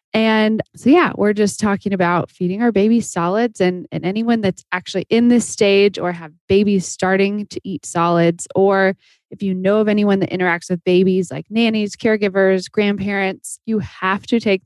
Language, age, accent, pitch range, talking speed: English, 20-39, American, 180-220 Hz, 180 wpm